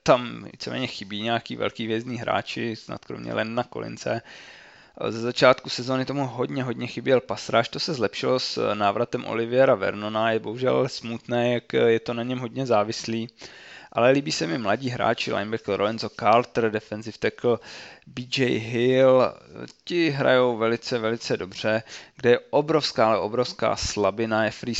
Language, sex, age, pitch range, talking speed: Slovak, male, 20-39, 110-125 Hz, 150 wpm